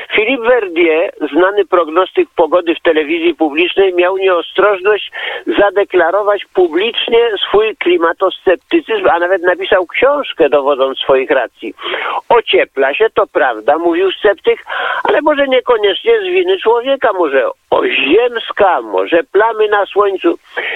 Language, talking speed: Polish, 115 wpm